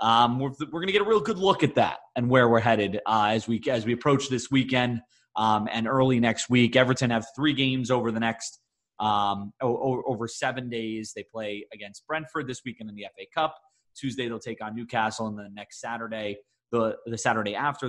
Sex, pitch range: male, 115-135 Hz